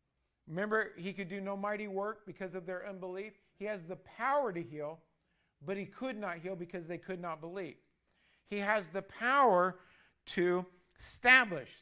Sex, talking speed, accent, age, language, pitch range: male, 170 wpm, American, 50-69, English, 165-210 Hz